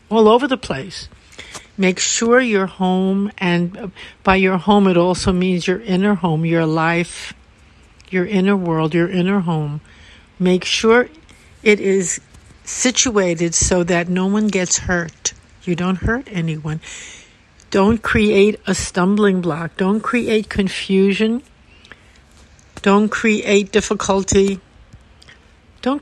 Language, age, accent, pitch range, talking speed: English, 60-79, American, 175-210 Hz, 120 wpm